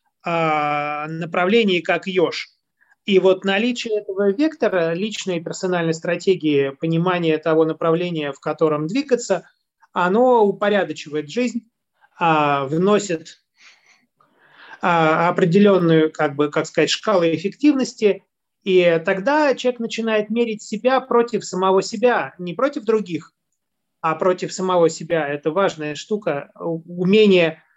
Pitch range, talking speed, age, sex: 160-205 Hz, 105 wpm, 30-49, male